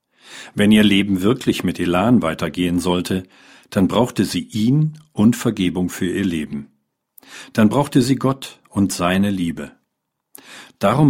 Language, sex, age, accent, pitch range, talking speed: German, male, 50-69, German, 90-120 Hz, 135 wpm